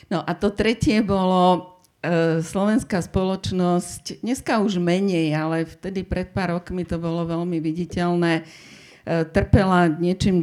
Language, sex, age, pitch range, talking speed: Slovak, female, 50-69, 155-180 Hz, 120 wpm